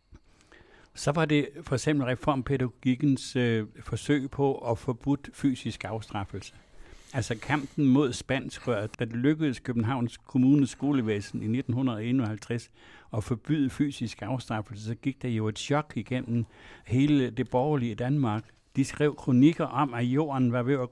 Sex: male